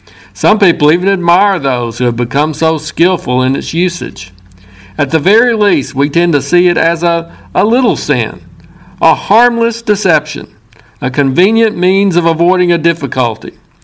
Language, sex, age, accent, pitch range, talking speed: English, male, 50-69, American, 145-180 Hz, 160 wpm